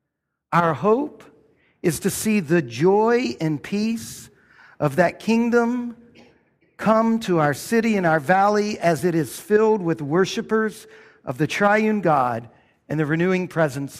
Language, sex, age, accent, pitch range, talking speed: English, male, 50-69, American, 170-225 Hz, 140 wpm